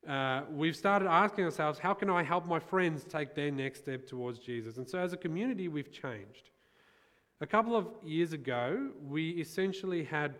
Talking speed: 185 wpm